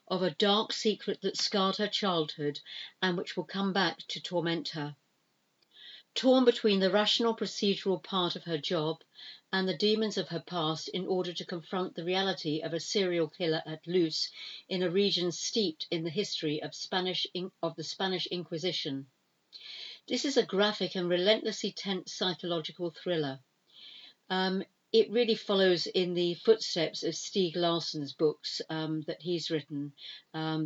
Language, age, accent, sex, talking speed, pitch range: English, 50-69, British, female, 160 wpm, 165-200 Hz